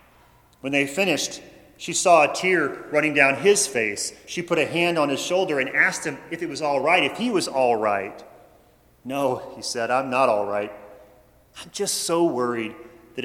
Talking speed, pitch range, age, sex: 195 wpm, 115-145 Hz, 40-59, male